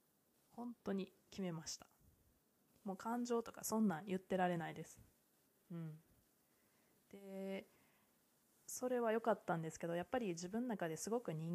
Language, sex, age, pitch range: Japanese, female, 20-39, 170-205 Hz